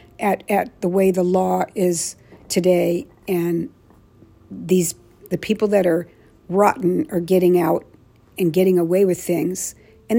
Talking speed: 140 wpm